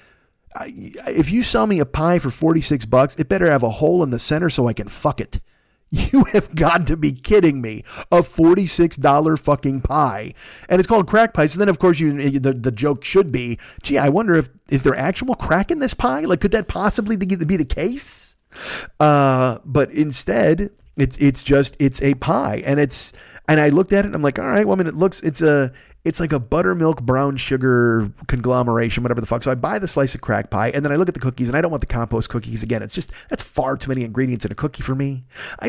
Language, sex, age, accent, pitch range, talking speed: English, male, 40-59, American, 130-195 Hz, 235 wpm